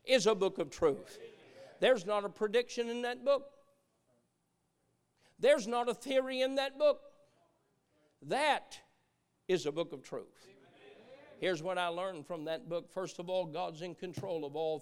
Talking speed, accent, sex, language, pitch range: 160 wpm, American, male, English, 210-275 Hz